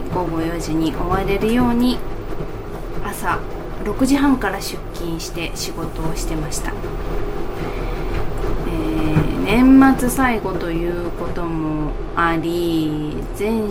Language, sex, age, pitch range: Japanese, female, 20-39, 170-230 Hz